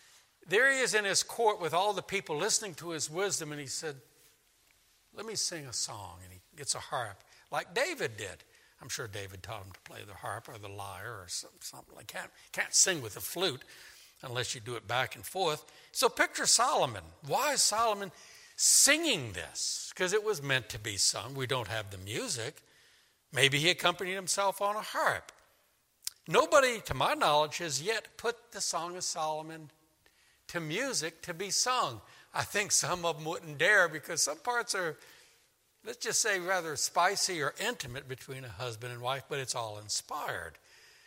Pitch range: 135-220 Hz